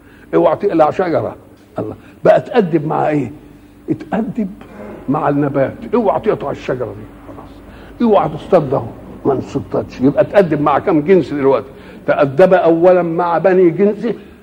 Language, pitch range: Arabic, 150-205 Hz